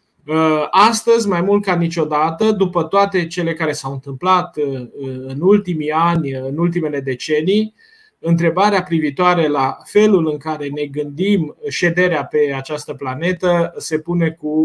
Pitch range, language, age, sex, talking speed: 150-195 Hz, Romanian, 20-39, male, 130 wpm